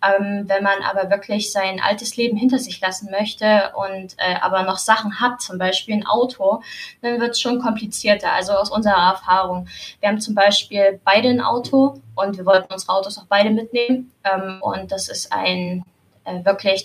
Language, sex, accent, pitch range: German, female, German, 195-225 Hz